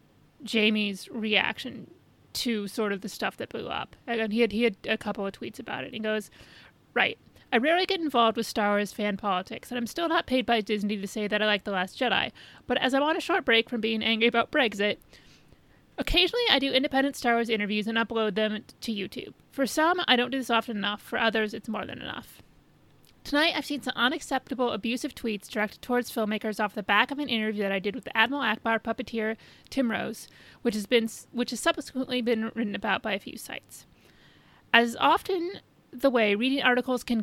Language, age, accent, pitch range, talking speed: English, 30-49, American, 220-270 Hz, 210 wpm